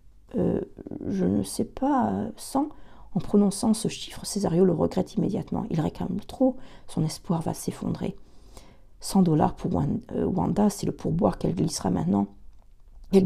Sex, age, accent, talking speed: female, 40-59, French, 145 wpm